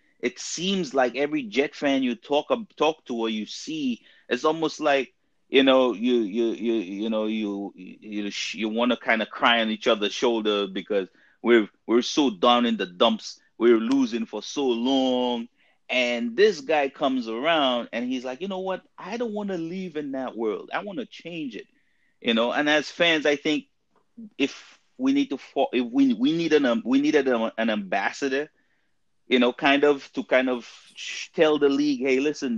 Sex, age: male, 30-49